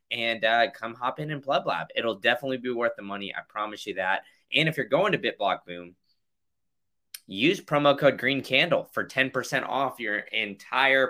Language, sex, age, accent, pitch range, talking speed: English, male, 20-39, American, 105-135 Hz, 190 wpm